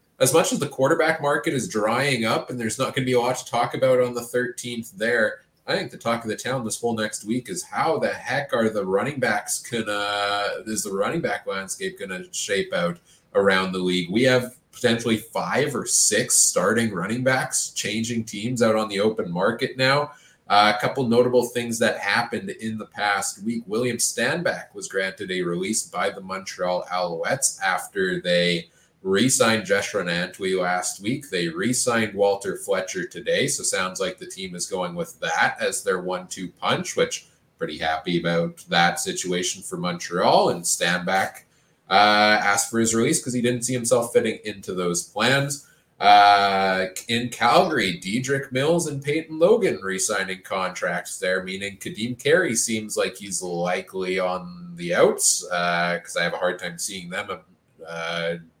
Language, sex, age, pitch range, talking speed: English, male, 20-39, 95-125 Hz, 180 wpm